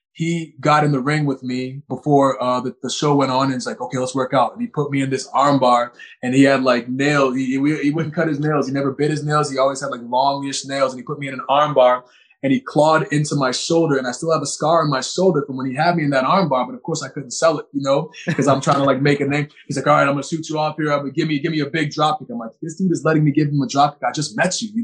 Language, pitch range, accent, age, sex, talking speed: English, 130-150 Hz, American, 20-39, male, 335 wpm